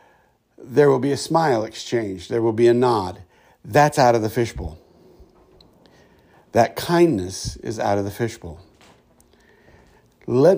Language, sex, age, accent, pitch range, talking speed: English, male, 60-79, American, 110-165 Hz, 135 wpm